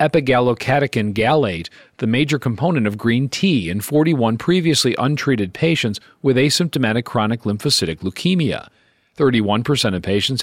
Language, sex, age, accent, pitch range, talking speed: English, male, 40-59, American, 105-140 Hz, 120 wpm